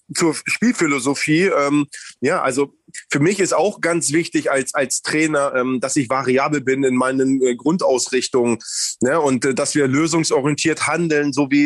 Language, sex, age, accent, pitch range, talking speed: German, male, 30-49, German, 135-160 Hz, 165 wpm